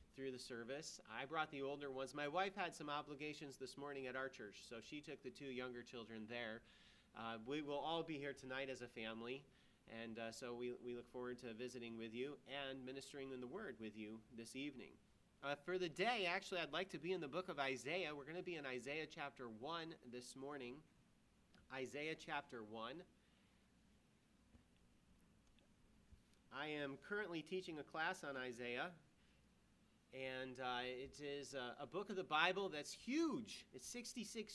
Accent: American